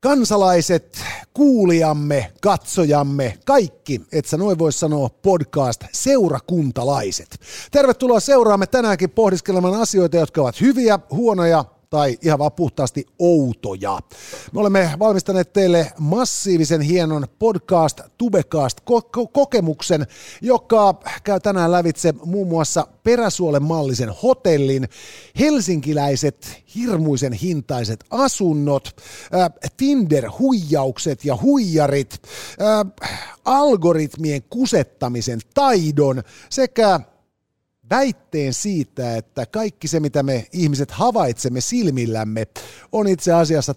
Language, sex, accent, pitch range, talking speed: Finnish, male, native, 135-200 Hz, 95 wpm